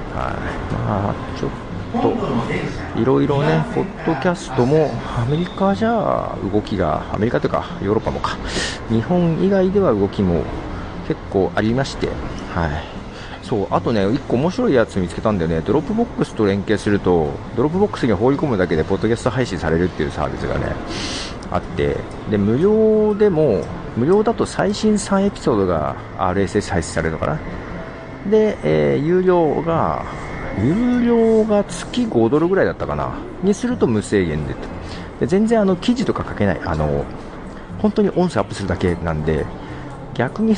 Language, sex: Japanese, male